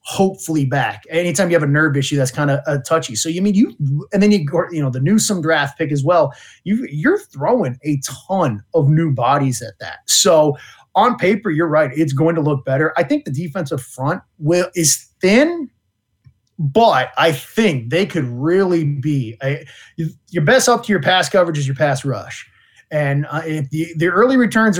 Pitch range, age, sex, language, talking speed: 140-185 Hz, 30-49, male, English, 200 wpm